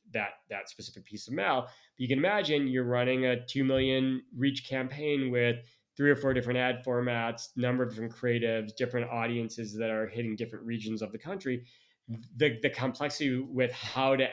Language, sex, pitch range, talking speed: English, male, 115-130 Hz, 185 wpm